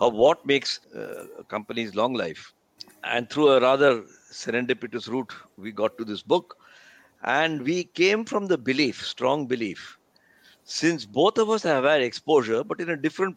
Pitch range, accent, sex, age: 115-165 Hz, Indian, male, 60-79